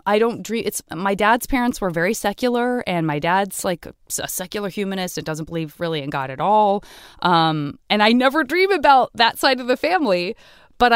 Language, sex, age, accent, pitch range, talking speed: English, female, 20-39, American, 155-195 Hz, 210 wpm